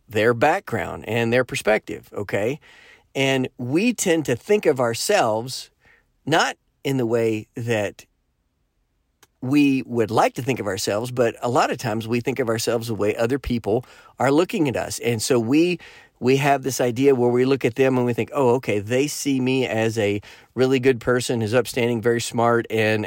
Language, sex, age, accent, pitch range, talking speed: English, male, 40-59, American, 115-135 Hz, 185 wpm